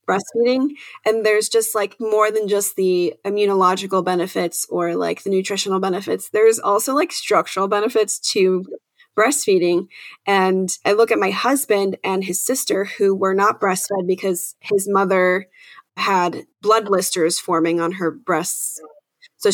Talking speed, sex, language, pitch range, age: 145 wpm, female, English, 180-225 Hz, 20-39